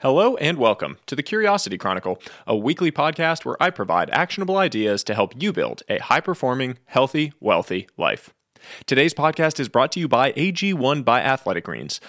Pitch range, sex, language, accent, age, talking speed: 110-165 Hz, male, English, American, 30-49, 175 wpm